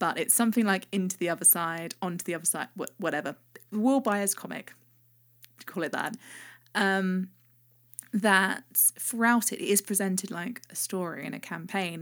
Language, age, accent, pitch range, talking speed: English, 20-39, British, 160-205 Hz, 160 wpm